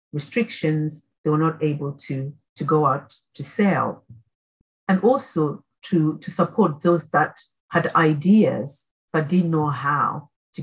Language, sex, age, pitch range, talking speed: English, female, 50-69, 140-175 Hz, 140 wpm